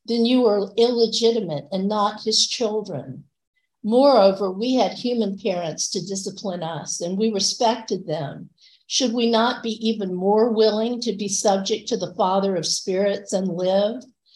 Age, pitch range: 50-69, 190-230 Hz